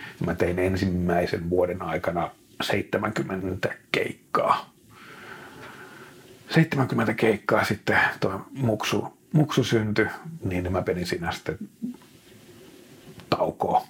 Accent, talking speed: native, 85 wpm